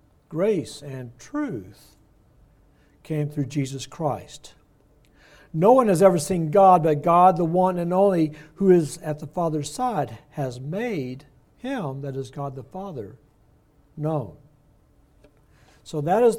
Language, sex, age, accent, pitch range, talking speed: English, male, 60-79, American, 140-180 Hz, 135 wpm